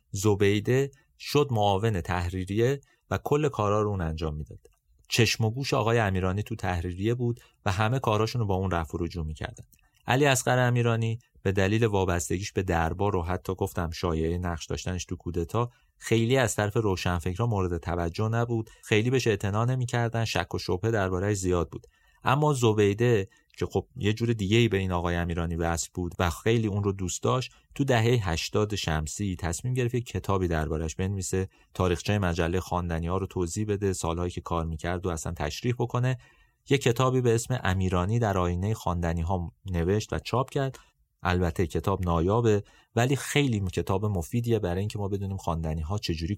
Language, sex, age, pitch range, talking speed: Persian, male, 30-49, 85-115 Hz, 170 wpm